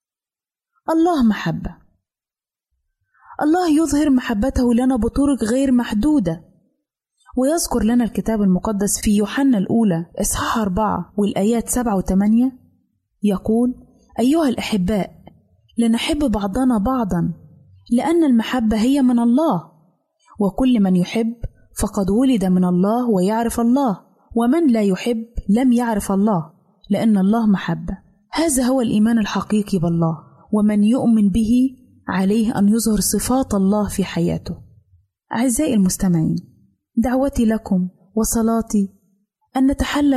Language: Arabic